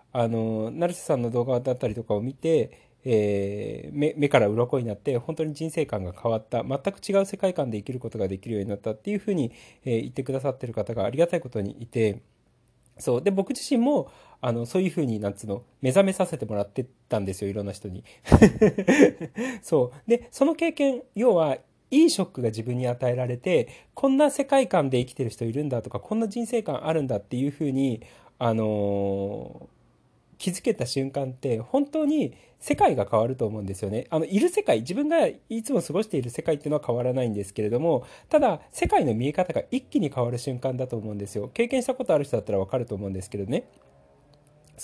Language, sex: Japanese, male